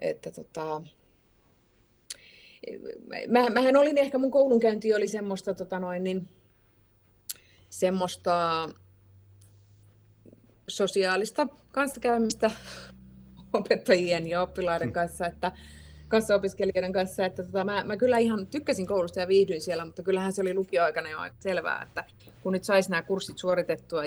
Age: 30-49